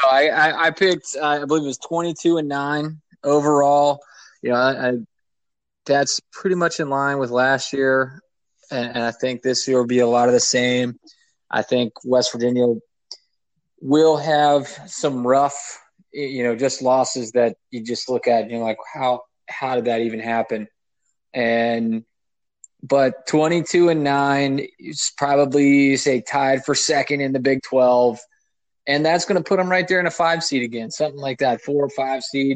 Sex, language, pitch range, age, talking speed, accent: male, English, 125-145 Hz, 20-39, 180 wpm, American